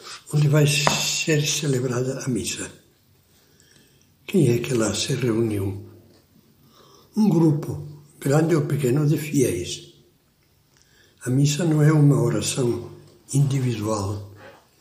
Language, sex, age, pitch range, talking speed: Portuguese, male, 60-79, 125-155 Hz, 105 wpm